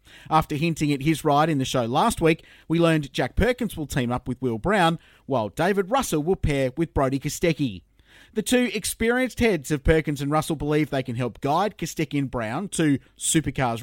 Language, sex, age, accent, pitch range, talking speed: English, male, 30-49, Australian, 130-165 Hz, 200 wpm